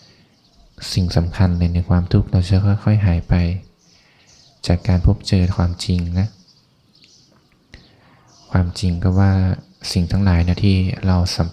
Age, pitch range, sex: 20-39, 90-100 Hz, male